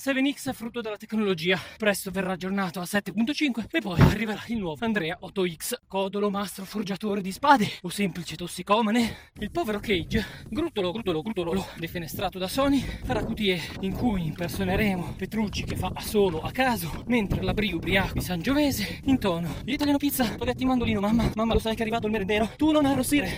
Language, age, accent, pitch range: Italian, 20-39, native, 180-225 Hz